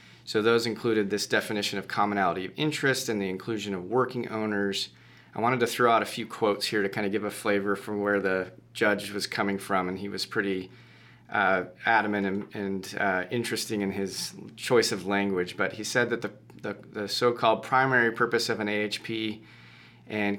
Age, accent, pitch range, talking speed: 30-49, American, 100-115 Hz, 190 wpm